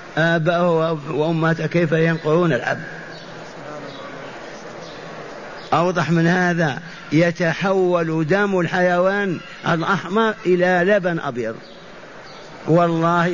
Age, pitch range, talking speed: 50-69, 150-175 Hz, 70 wpm